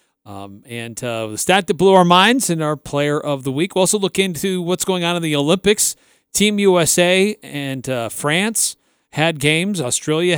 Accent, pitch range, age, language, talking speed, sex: American, 125-165 Hz, 40-59, English, 190 wpm, male